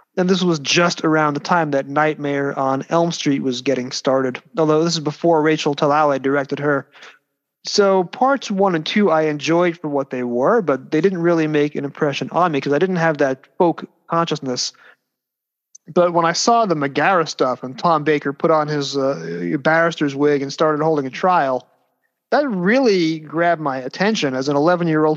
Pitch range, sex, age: 140-170 Hz, male, 30-49